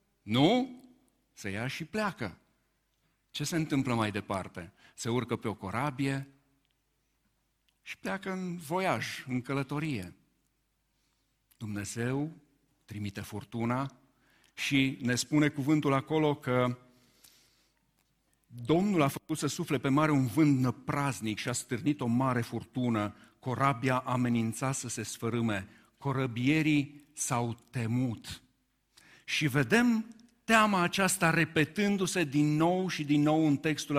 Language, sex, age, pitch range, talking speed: Romanian, male, 50-69, 120-155 Hz, 115 wpm